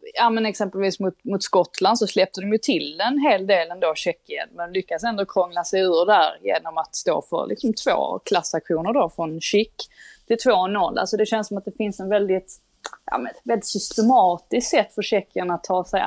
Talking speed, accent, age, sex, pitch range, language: 200 wpm, native, 20-39, female, 180-215 Hz, Swedish